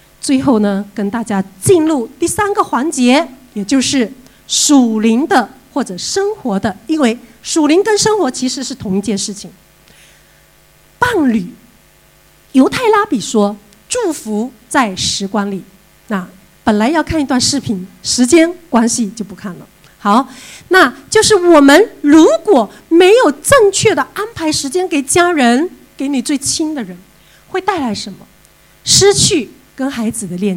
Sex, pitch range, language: female, 210-325 Hz, English